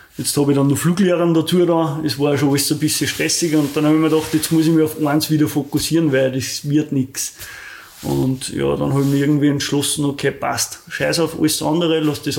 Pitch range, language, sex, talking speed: 135-155 Hz, German, male, 240 wpm